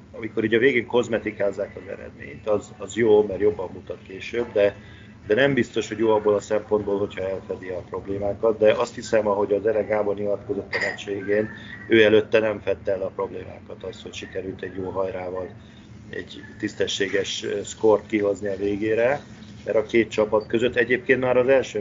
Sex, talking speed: male, 180 wpm